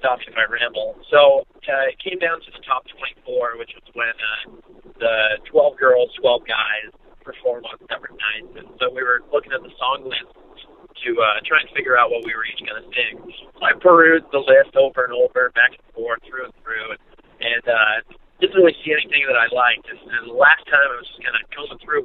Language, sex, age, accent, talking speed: English, male, 40-59, American, 225 wpm